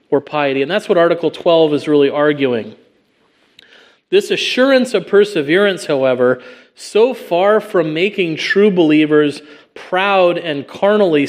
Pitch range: 135-175 Hz